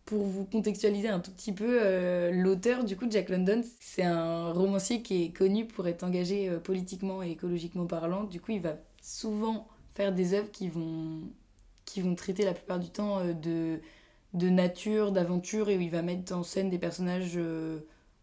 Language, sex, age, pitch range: French, female, 20-39, 180-215 Hz